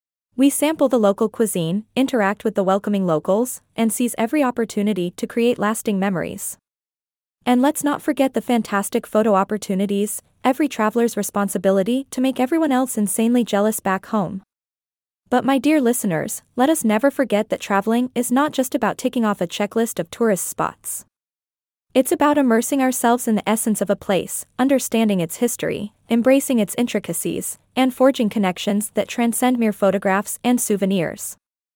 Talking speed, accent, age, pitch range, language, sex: 155 wpm, American, 20-39, 200-250 Hz, English, female